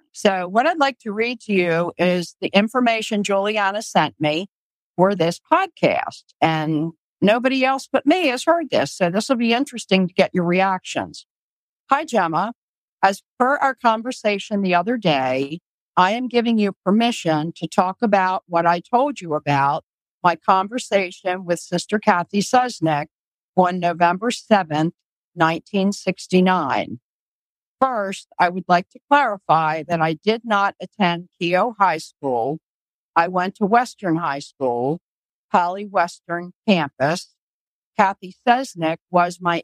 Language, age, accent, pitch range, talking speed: English, 50-69, American, 170-220 Hz, 140 wpm